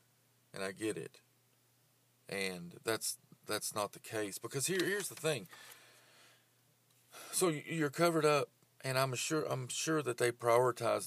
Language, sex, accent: English, male, American